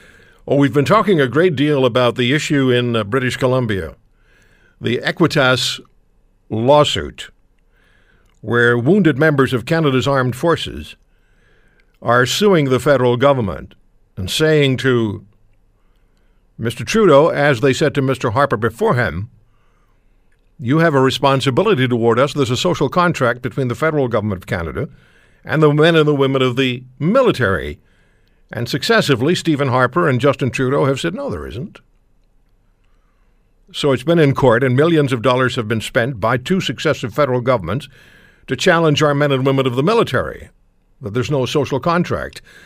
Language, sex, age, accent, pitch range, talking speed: English, male, 60-79, American, 110-145 Hz, 155 wpm